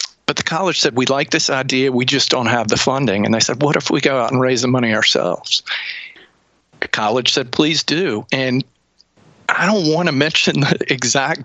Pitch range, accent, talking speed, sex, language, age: 125-150 Hz, American, 210 wpm, male, English, 50-69